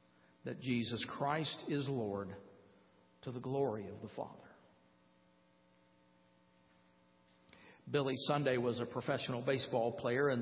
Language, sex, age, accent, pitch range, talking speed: English, male, 50-69, American, 125-195 Hz, 110 wpm